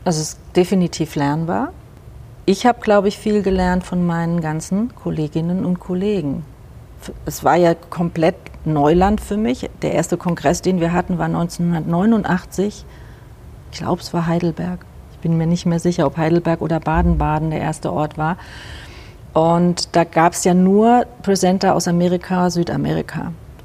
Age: 40-59